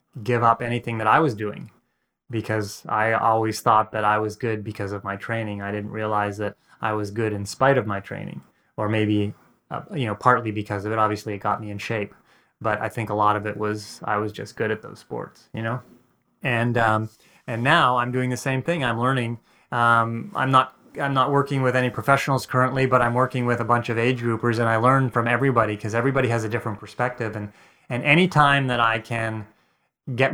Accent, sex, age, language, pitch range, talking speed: American, male, 30-49, English, 110-125 Hz, 220 wpm